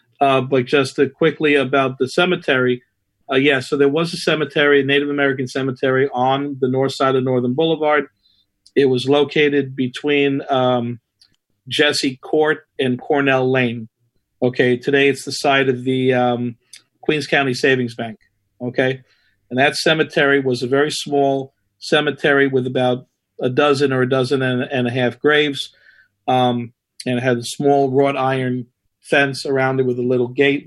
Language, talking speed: English, 160 wpm